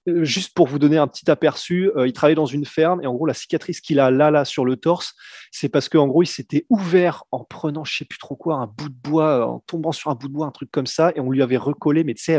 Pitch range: 130-170 Hz